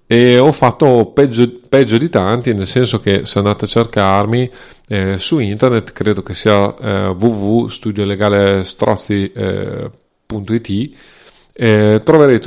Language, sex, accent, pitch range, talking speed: Italian, male, native, 100-125 Hz, 110 wpm